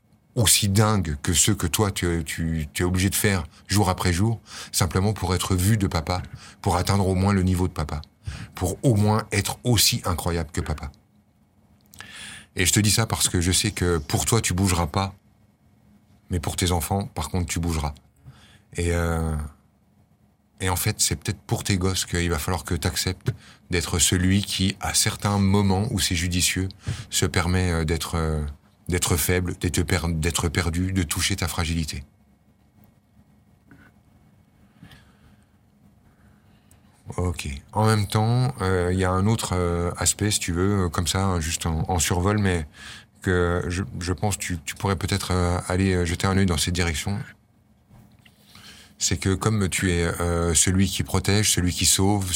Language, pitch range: French, 90-105 Hz